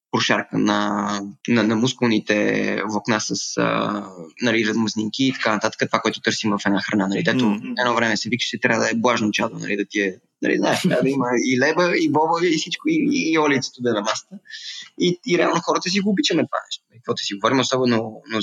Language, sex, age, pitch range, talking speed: Bulgarian, male, 20-39, 110-135 Hz, 220 wpm